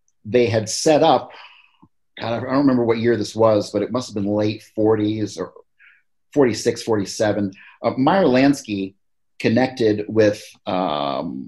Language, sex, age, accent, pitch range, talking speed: English, male, 30-49, American, 100-120 Hz, 145 wpm